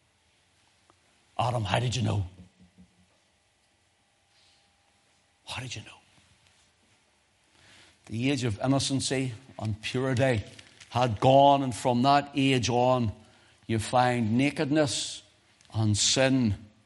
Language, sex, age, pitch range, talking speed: English, male, 60-79, 105-150 Hz, 95 wpm